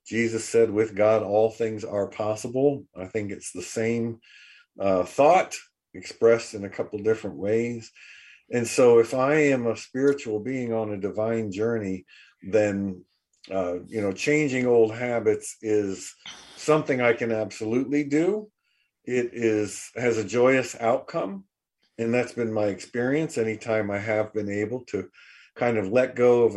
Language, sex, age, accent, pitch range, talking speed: English, male, 50-69, American, 105-125 Hz, 155 wpm